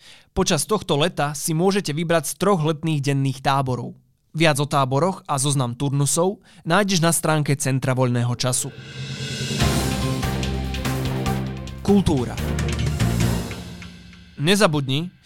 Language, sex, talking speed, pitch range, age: Slovak, male, 100 wpm, 130-165 Hz, 20-39